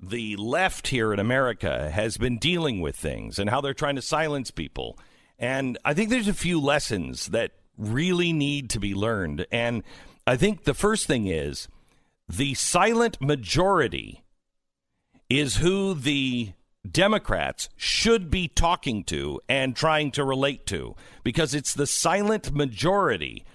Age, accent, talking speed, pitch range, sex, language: 50-69, American, 150 wpm, 120-180 Hz, male, English